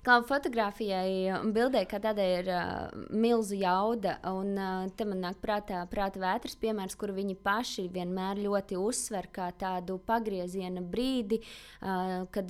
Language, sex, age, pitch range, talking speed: English, female, 20-39, 180-220 Hz, 145 wpm